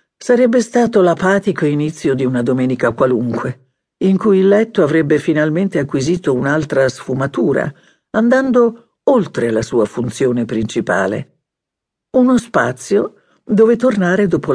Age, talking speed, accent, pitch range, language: 50-69, 115 wpm, native, 130-195 Hz, Italian